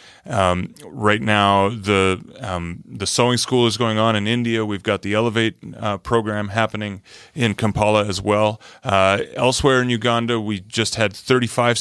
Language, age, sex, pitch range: English, 30-49, male, 100-120 Hz